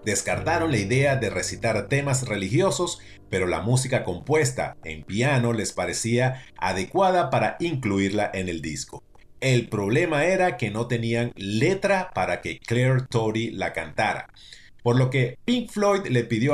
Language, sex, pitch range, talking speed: Spanish, male, 105-140 Hz, 150 wpm